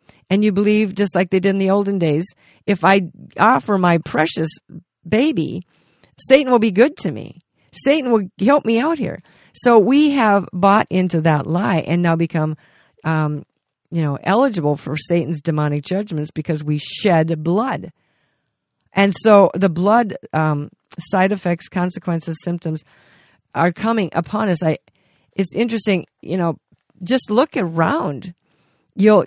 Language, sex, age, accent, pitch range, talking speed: English, female, 50-69, American, 165-205 Hz, 150 wpm